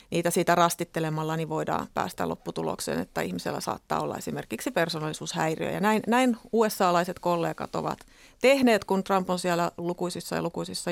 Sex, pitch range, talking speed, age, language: female, 170-200 Hz, 155 wpm, 30-49, Finnish